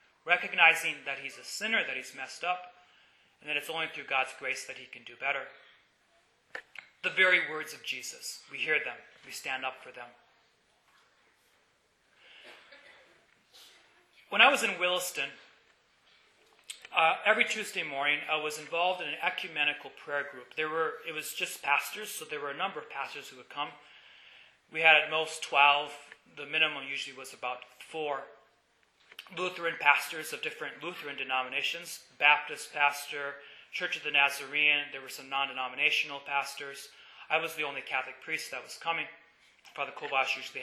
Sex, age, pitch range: male, 30-49, 140-170 Hz